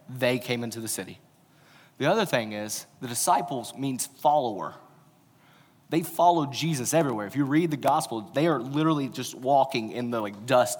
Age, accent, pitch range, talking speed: 30-49, American, 125-160 Hz, 165 wpm